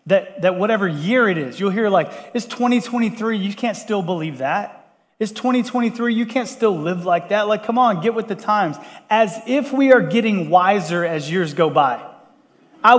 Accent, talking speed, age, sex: American, 195 wpm, 30-49, male